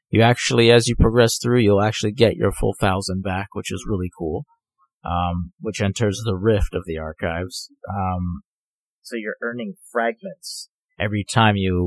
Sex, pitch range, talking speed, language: male, 95-115 Hz, 165 wpm, English